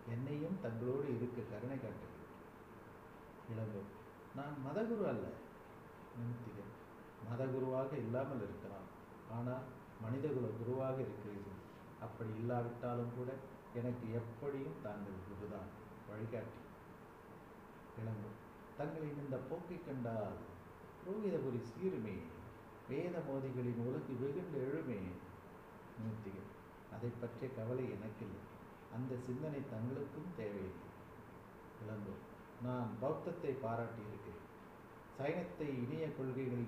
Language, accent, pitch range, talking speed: Tamil, native, 110-130 Hz, 85 wpm